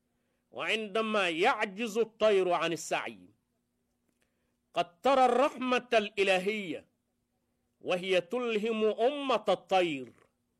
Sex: male